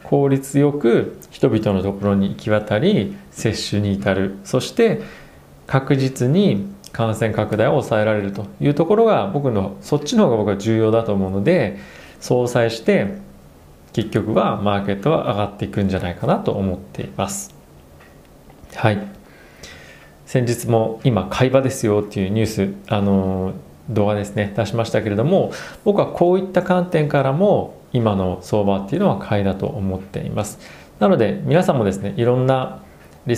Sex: male